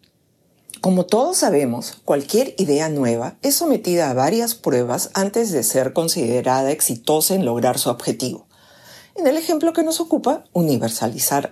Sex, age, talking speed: female, 50-69, 140 wpm